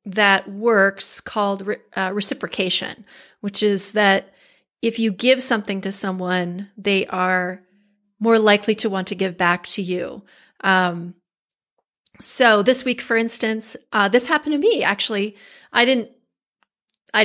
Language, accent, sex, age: English, American, female, 30-49